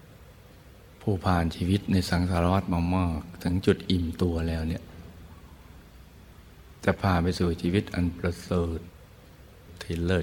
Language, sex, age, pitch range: Thai, male, 60-79, 85-95 Hz